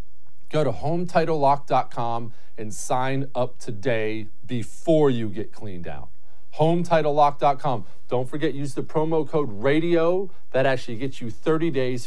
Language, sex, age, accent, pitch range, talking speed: English, male, 40-59, American, 110-175 Hz, 130 wpm